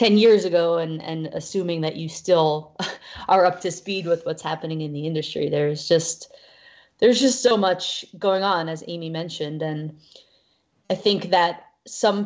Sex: female